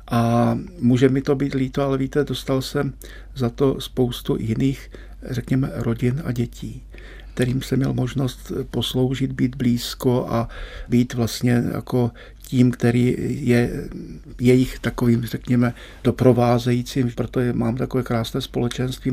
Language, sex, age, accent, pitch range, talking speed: Czech, male, 50-69, native, 120-130 Hz, 130 wpm